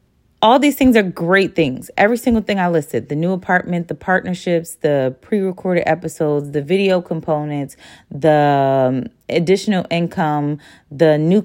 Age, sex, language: 30-49, female, English